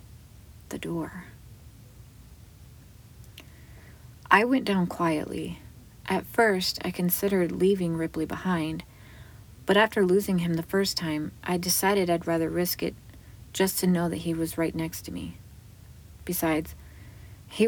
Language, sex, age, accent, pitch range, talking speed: English, female, 30-49, American, 125-185 Hz, 130 wpm